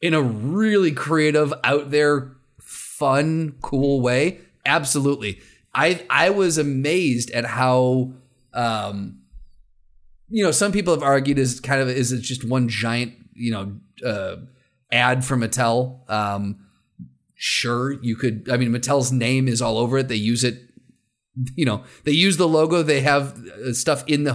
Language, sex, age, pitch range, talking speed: English, male, 30-49, 120-145 Hz, 155 wpm